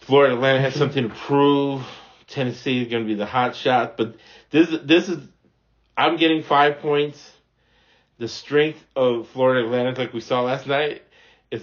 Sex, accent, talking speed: male, American, 170 wpm